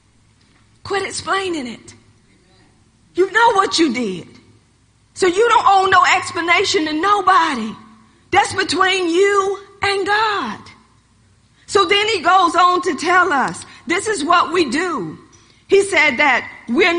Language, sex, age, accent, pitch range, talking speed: English, female, 40-59, American, 280-370 Hz, 135 wpm